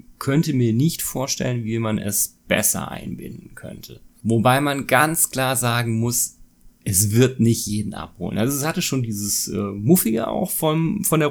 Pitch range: 105-130 Hz